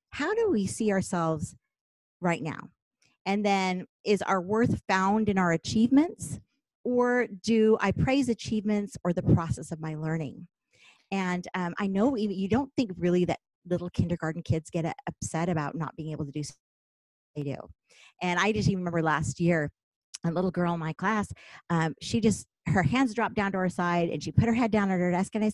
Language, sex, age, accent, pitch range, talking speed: English, female, 40-59, American, 170-230 Hz, 195 wpm